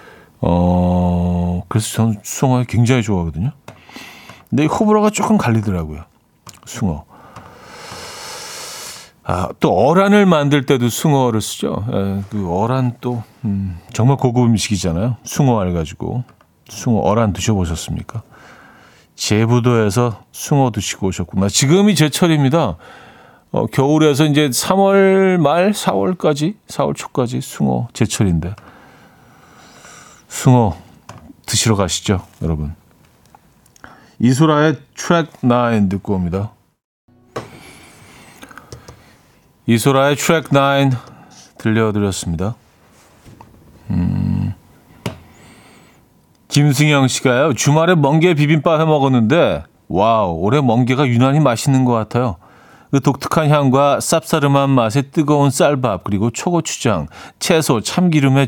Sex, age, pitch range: male, 40-59, 100-150 Hz